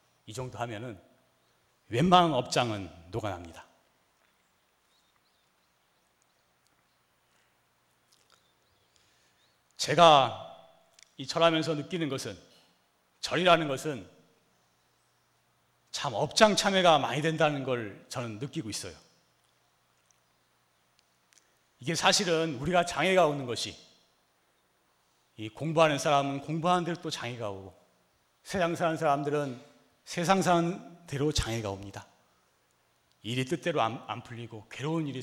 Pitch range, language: 100-160 Hz, Korean